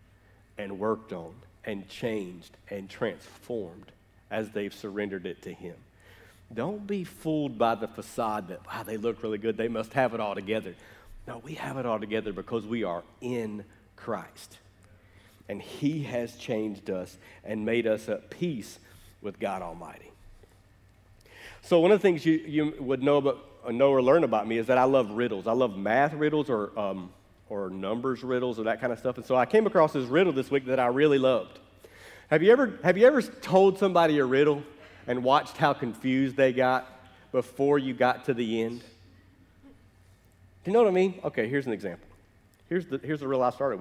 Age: 50-69